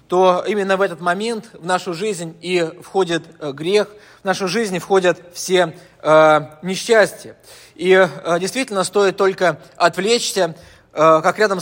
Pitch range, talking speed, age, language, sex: 160-195 Hz, 140 wpm, 20-39, Russian, male